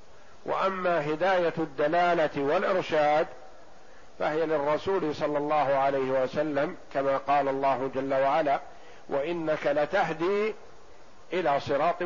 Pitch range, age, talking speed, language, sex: 145-180 Hz, 50-69, 95 wpm, Arabic, male